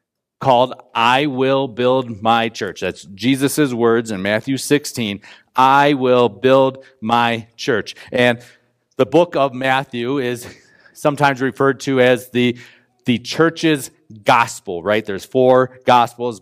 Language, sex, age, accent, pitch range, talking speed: English, male, 40-59, American, 115-150 Hz, 130 wpm